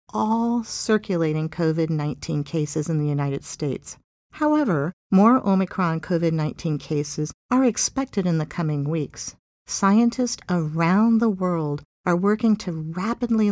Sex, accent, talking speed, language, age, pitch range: female, American, 130 wpm, English, 50-69, 155-210 Hz